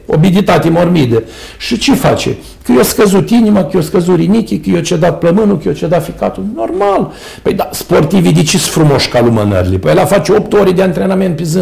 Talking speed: 215 wpm